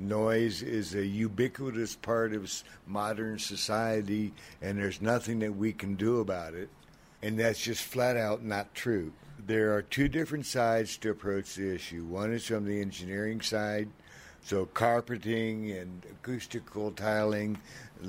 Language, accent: English, American